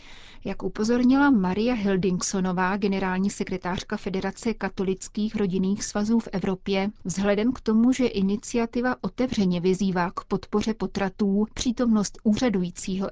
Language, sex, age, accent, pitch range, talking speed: Czech, female, 30-49, native, 190-215 Hz, 110 wpm